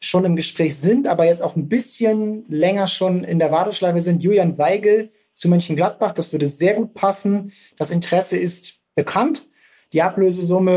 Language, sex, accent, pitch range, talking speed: German, male, German, 155-185 Hz, 175 wpm